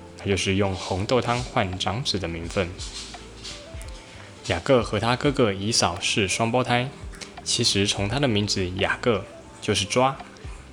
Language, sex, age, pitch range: Chinese, male, 10-29, 95-115 Hz